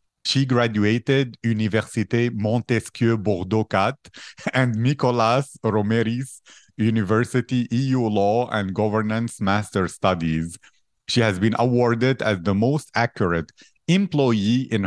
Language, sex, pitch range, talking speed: English, male, 105-125 Hz, 105 wpm